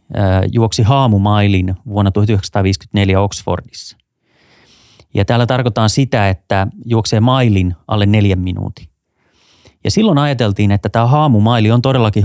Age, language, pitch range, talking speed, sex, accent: 30-49, Finnish, 95-120 Hz, 115 wpm, male, native